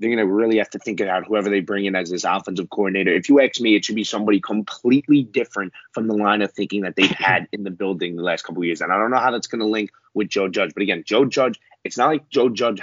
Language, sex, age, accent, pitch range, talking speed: English, male, 20-39, American, 95-115 Hz, 295 wpm